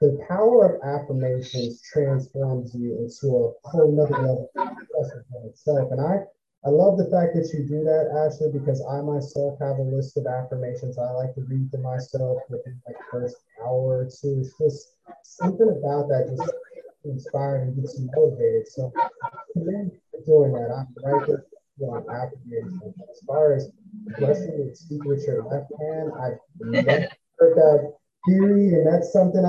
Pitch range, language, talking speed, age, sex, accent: 130-185 Hz, English, 155 wpm, 30-49, male, American